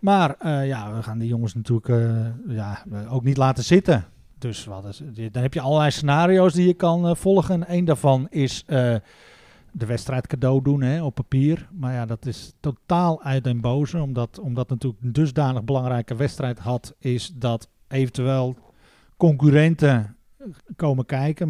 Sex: male